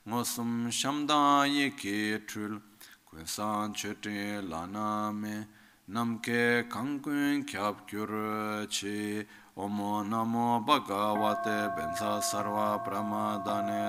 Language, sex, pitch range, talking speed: Italian, male, 105-140 Hz, 60 wpm